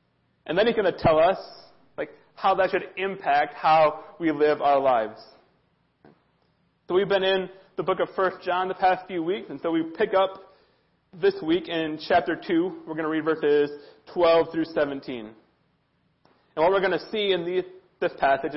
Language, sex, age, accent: English, male, 30-49, American